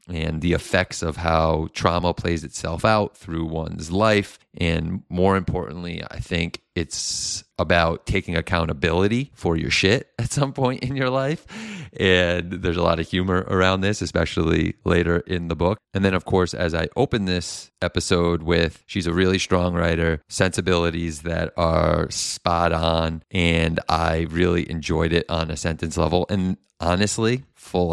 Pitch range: 85-100 Hz